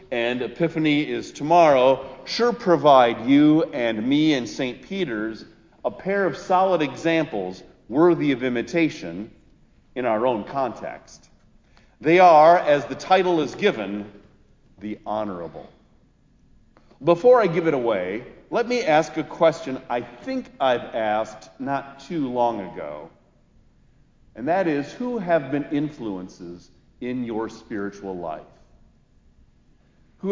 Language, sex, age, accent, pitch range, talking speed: English, male, 50-69, American, 110-160 Hz, 125 wpm